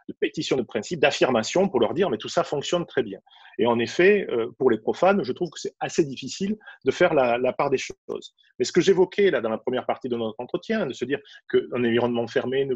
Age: 30-49